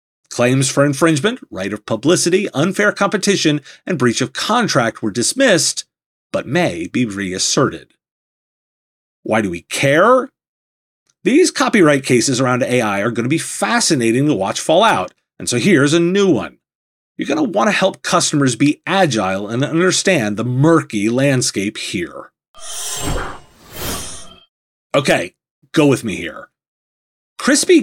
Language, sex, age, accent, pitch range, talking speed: English, male, 30-49, American, 130-200 Hz, 135 wpm